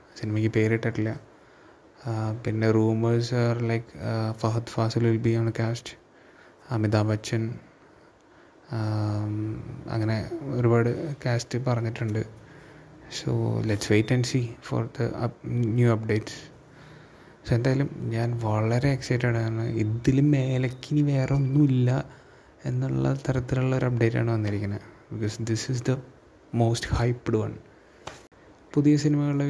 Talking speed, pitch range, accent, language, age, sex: 105 wpm, 110-130 Hz, native, Malayalam, 20-39, male